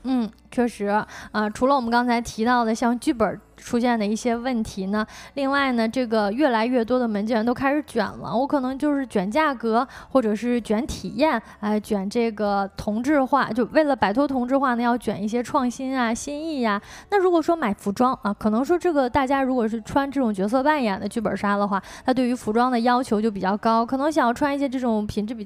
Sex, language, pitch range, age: female, Chinese, 215-280 Hz, 20-39